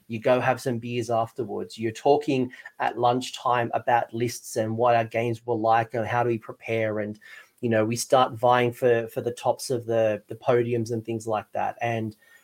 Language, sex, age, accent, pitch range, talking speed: English, male, 30-49, Australian, 115-130 Hz, 205 wpm